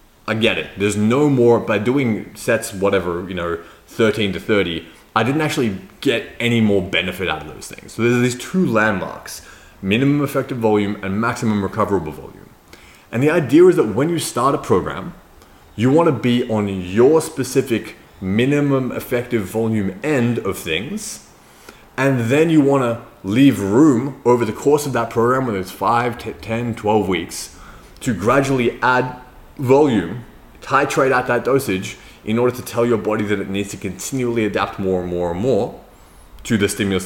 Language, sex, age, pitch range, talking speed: English, male, 20-39, 95-125 Hz, 180 wpm